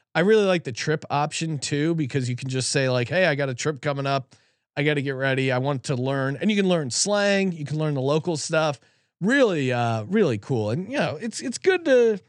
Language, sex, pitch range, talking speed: English, male, 130-185 Hz, 250 wpm